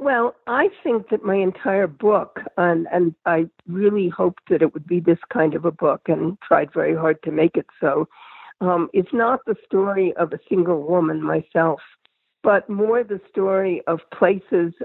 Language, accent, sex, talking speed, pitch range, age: English, American, female, 180 wpm, 160-190 Hz, 60-79